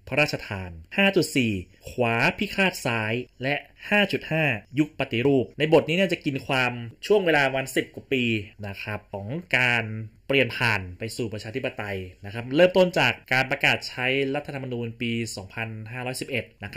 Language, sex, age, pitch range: Thai, male, 20-39, 105-130 Hz